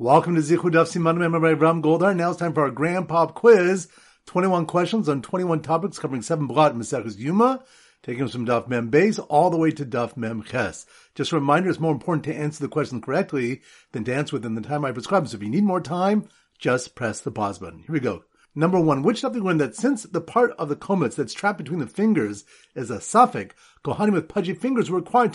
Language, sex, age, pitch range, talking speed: English, male, 40-59, 130-190 Hz, 230 wpm